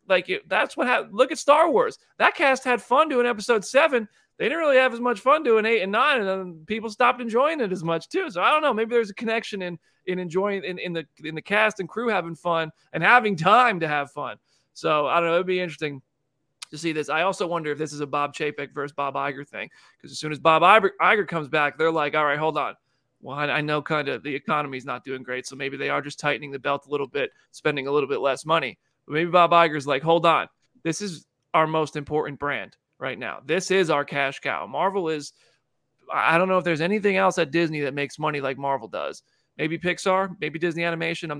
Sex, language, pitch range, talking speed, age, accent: male, English, 150-190 Hz, 245 wpm, 30-49, American